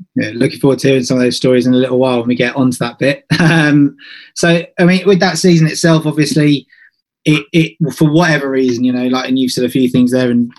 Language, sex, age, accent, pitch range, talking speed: English, male, 20-39, British, 125-150 Hz, 255 wpm